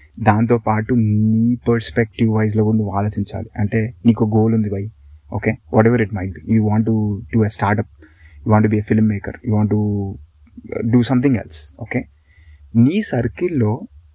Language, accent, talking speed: Telugu, native, 145 wpm